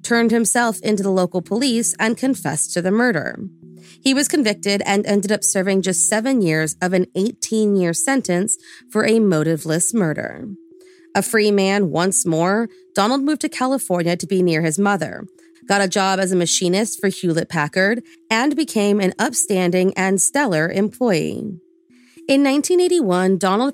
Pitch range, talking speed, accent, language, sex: 180-240 Hz, 155 wpm, American, English, female